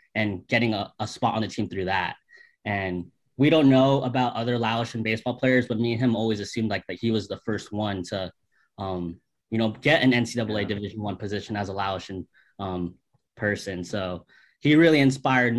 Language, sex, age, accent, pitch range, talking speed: English, male, 20-39, American, 100-120 Hz, 195 wpm